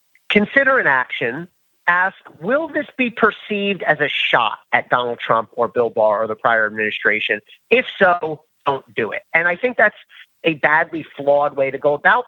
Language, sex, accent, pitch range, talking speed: English, male, American, 145-210 Hz, 180 wpm